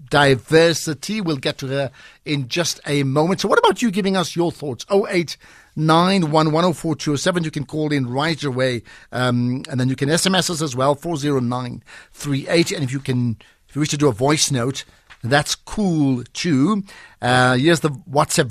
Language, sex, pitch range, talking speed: English, male, 125-155 Hz, 170 wpm